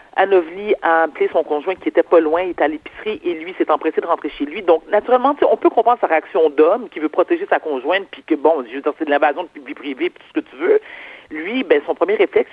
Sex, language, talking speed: male, French, 275 wpm